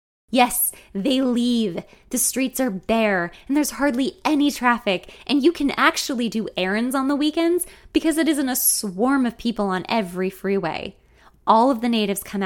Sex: female